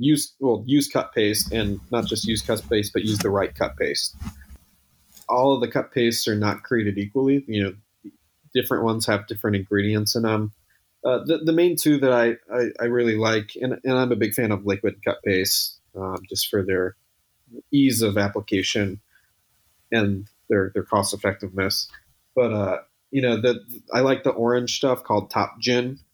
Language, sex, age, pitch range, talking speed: English, male, 30-49, 100-120 Hz, 185 wpm